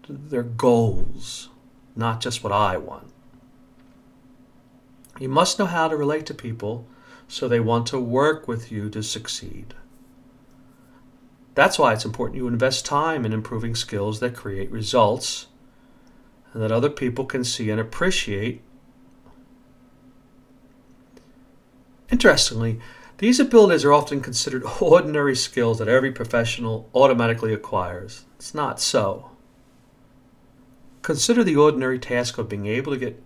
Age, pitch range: 50-69, 120-140 Hz